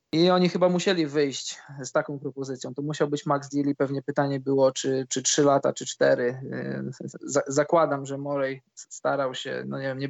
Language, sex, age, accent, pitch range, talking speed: Polish, male, 20-39, native, 135-155 Hz, 180 wpm